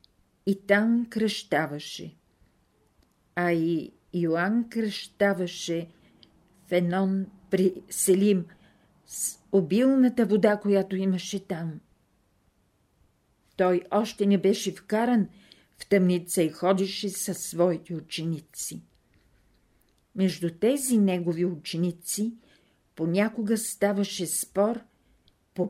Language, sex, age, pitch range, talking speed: Bulgarian, female, 50-69, 170-210 Hz, 85 wpm